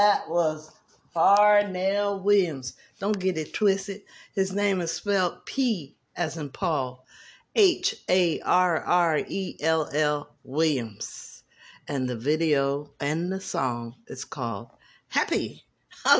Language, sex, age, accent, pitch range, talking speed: English, female, 60-79, American, 140-210 Hz, 105 wpm